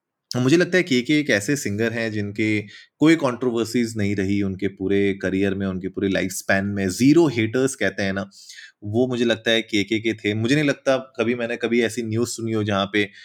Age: 20-39